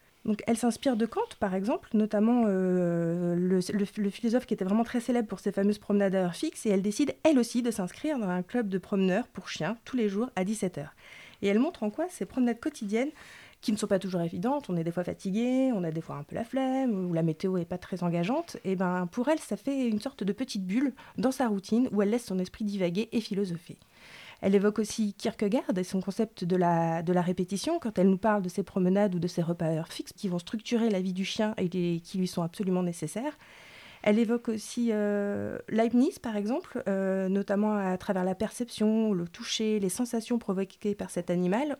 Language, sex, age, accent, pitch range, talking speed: French, female, 30-49, French, 185-240 Hz, 225 wpm